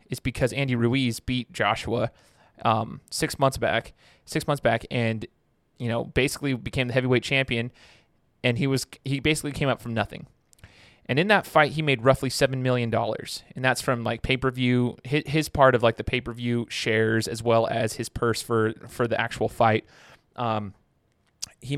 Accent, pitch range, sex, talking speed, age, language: American, 115-130 Hz, male, 175 wpm, 20-39, English